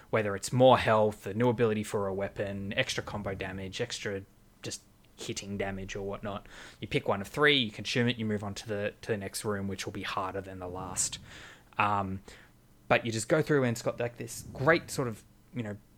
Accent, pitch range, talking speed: Australian, 100-120 Hz, 220 wpm